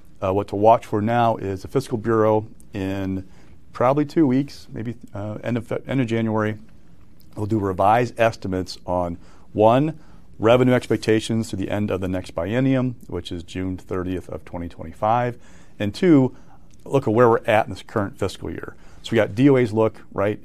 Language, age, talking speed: English, 40-59, 175 wpm